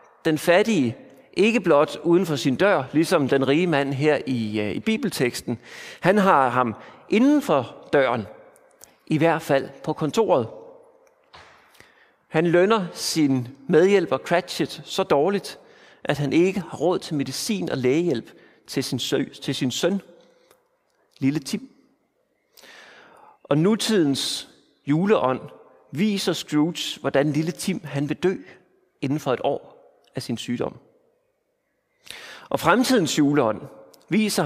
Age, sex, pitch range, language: 40-59, male, 145-220 Hz, Danish